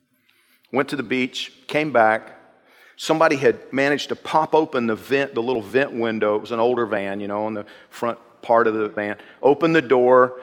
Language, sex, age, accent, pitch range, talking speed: English, male, 50-69, American, 125-180 Hz, 200 wpm